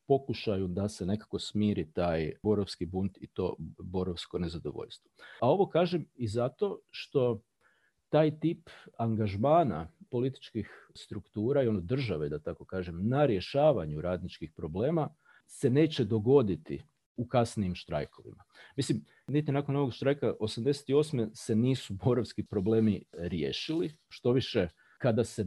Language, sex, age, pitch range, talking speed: English, male, 40-59, 95-120 Hz, 125 wpm